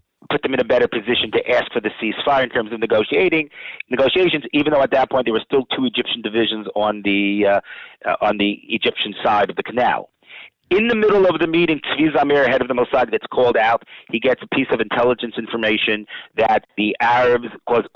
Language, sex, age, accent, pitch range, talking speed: English, male, 30-49, American, 105-135 Hz, 210 wpm